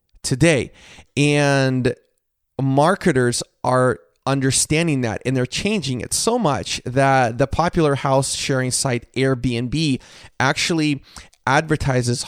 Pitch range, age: 125-150 Hz, 30-49